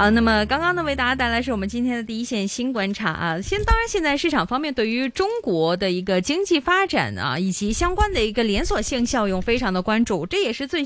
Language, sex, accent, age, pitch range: Chinese, female, native, 20-39, 190-270 Hz